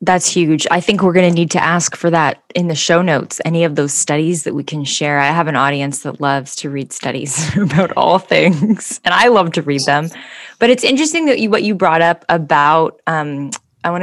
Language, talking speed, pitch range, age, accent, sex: English, 230 wpm, 145-185 Hz, 10-29, American, female